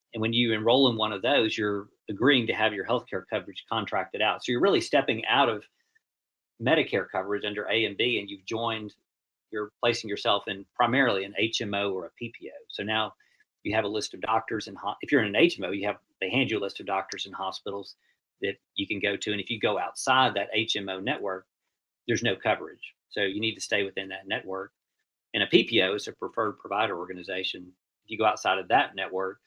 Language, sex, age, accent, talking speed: English, male, 40-59, American, 220 wpm